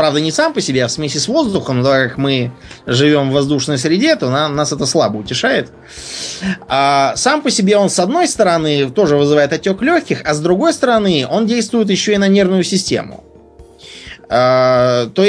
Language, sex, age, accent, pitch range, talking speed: Russian, male, 20-39, native, 130-190 Hz, 190 wpm